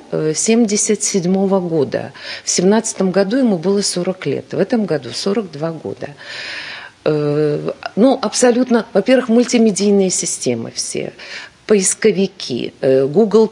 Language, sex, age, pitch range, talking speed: Russian, female, 50-69, 160-210 Hz, 95 wpm